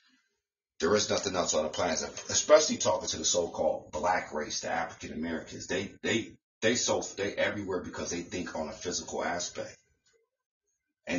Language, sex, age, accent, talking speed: English, male, 30-49, American, 165 wpm